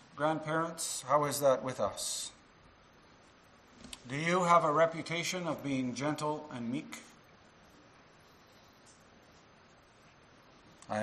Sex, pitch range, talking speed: male, 125-165 Hz, 90 wpm